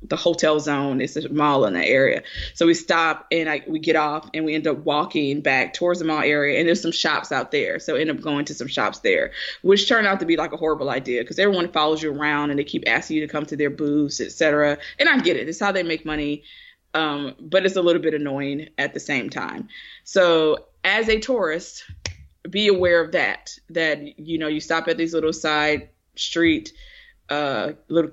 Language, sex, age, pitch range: English, female, 20-39, 145-175 Hz